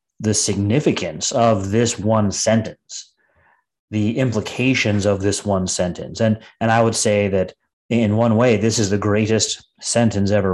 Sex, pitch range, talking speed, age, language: male, 100-120 Hz, 155 wpm, 30-49, English